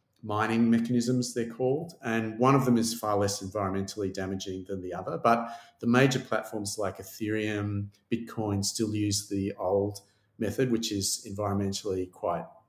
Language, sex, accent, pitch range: English, male, Australian, 105-125 Hz